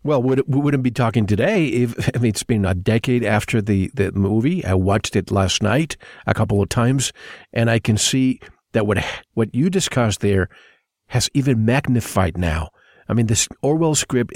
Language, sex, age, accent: English, male, 50-69, American